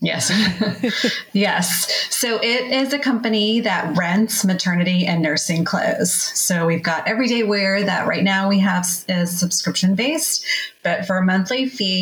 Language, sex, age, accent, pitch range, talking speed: English, female, 30-49, American, 165-210 Hz, 150 wpm